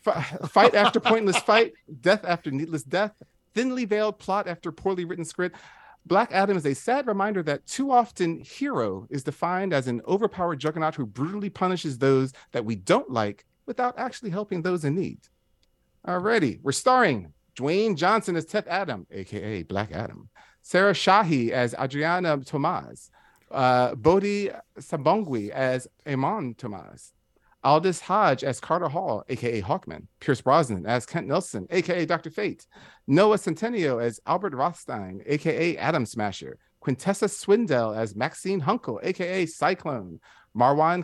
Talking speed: 145 wpm